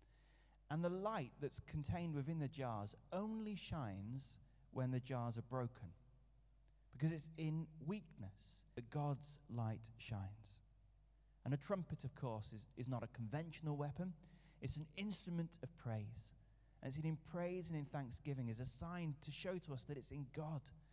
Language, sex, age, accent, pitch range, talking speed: English, male, 30-49, British, 115-150 Hz, 160 wpm